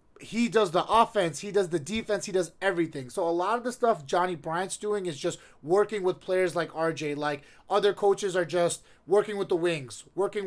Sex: male